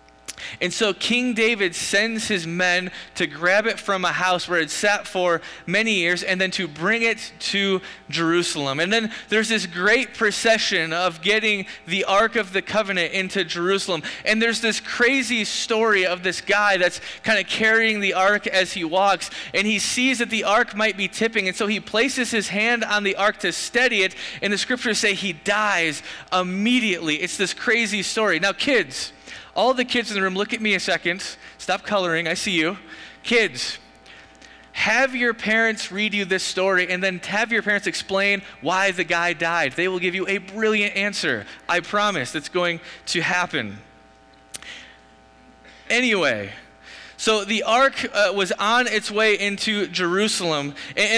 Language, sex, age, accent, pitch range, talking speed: English, male, 20-39, American, 180-220 Hz, 175 wpm